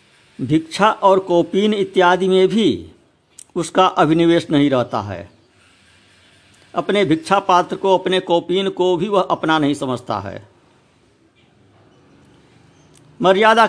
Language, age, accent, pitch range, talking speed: Hindi, 50-69, native, 135-190 Hz, 110 wpm